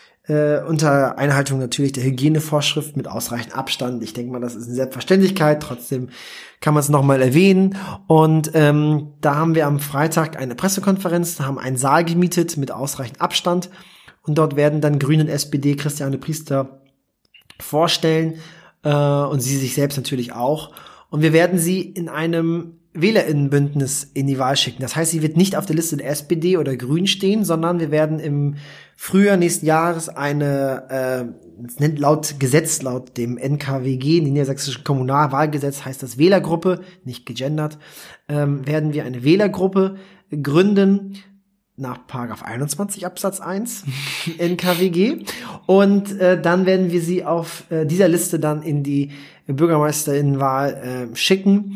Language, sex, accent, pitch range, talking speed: German, male, German, 140-175 Hz, 150 wpm